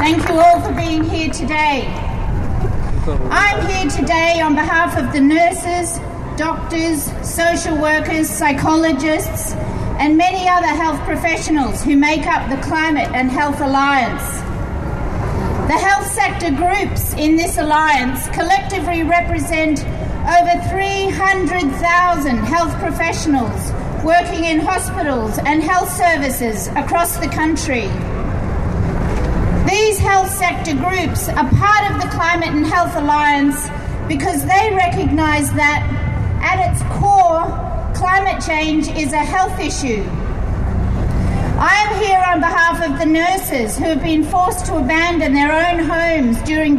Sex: female